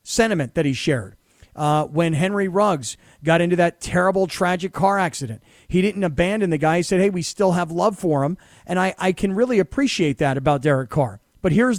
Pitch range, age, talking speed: 170-215 Hz, 40-59, 210 wpm